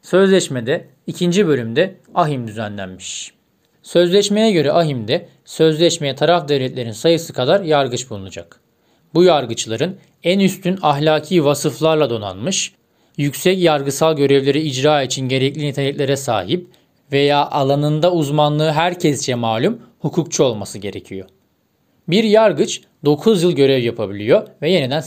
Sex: male